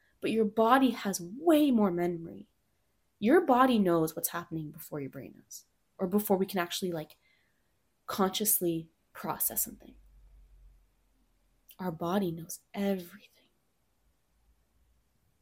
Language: English